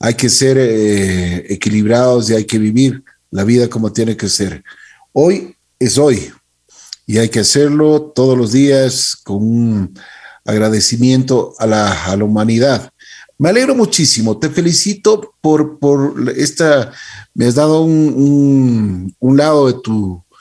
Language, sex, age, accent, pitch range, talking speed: Spanish, male, 50-69, Mexican, 110-145 Hz, 145 wpm